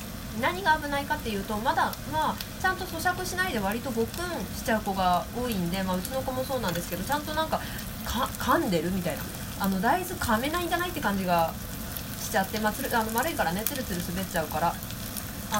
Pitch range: 180-255 Hz